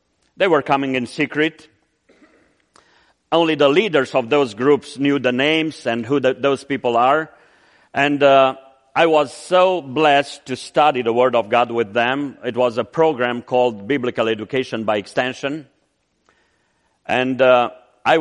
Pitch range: 125-160 Hz